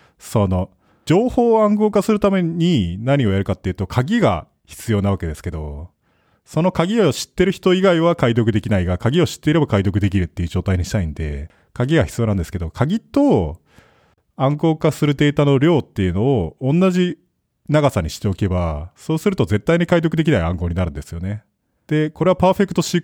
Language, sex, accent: Japanese, male, native